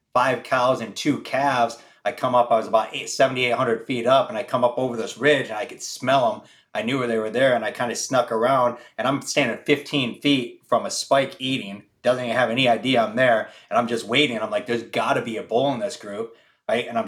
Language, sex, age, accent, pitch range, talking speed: English, male, 30-49, American, 115-130 Hz, 255 wpm